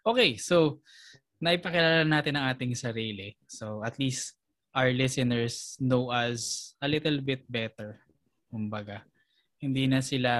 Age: 20-39